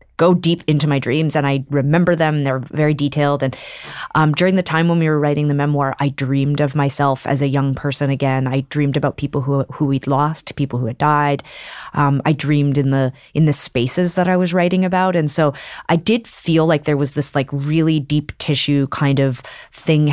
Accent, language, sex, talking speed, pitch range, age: American, English, female, 220 wpm, 140-160 Hz, 30-49